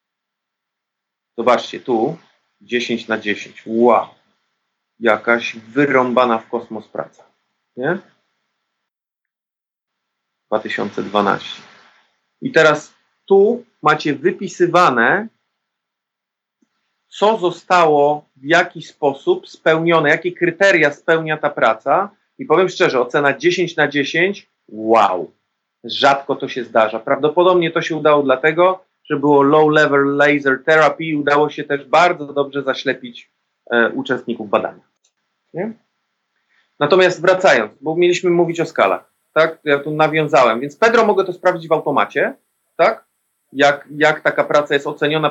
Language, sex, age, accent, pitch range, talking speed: Polish, male, 40-59, native, 140-180 Hz, 115 wpm